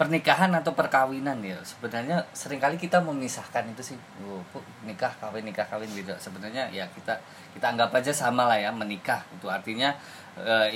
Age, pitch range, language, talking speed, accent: 20-39, 100-130 Hz, Indonesian, 175 wpm, native